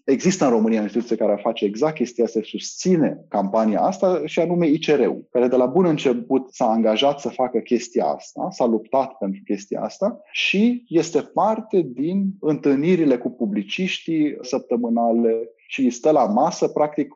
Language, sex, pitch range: Romanian, male, 115-160 Hz